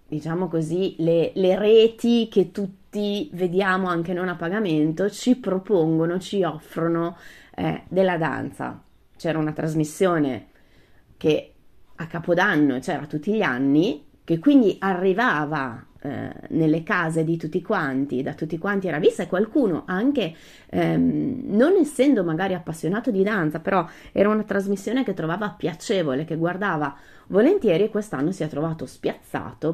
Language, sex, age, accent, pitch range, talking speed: Italian, female, 30-49, native, 155-200 Hz, 135 wpm